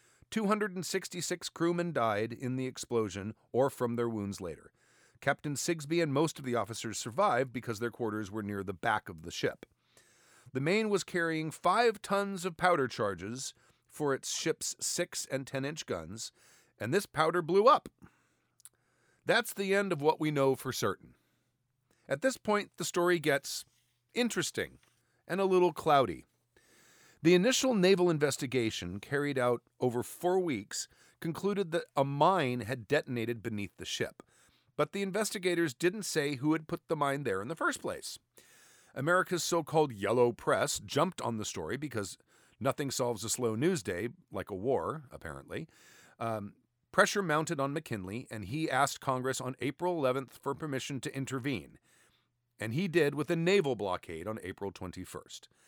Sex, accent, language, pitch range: male, American, English, 120-175 Hz